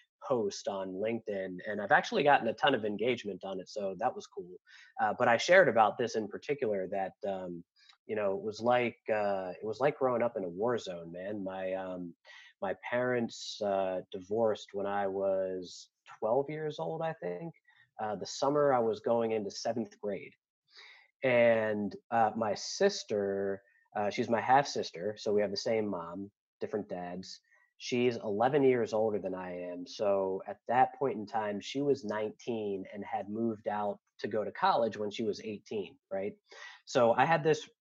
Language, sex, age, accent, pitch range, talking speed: English, male, 30-49, American, 95-130 Hz, 185 wpm